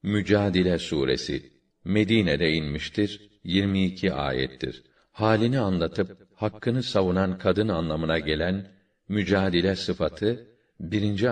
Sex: male